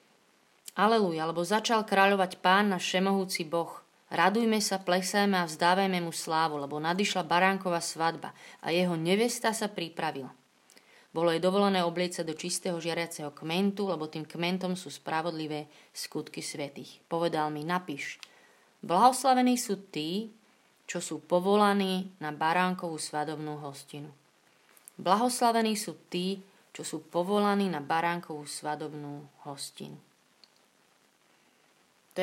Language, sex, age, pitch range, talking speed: Slovak, female, 30-49, 160-195 Hz, 120 wpm